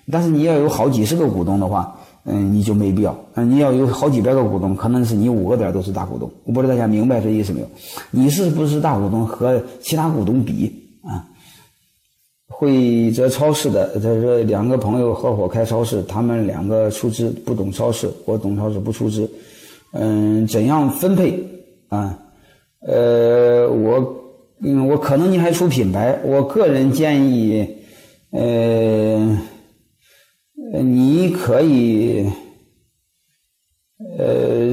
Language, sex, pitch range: Chinese, male, 110-140 Hz